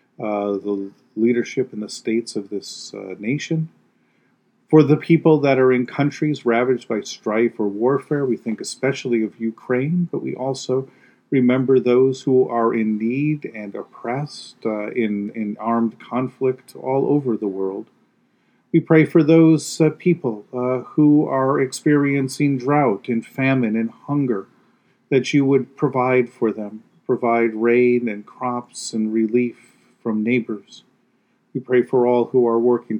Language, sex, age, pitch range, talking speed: English, male, 40-59, 115-135 Hz, 150 wpm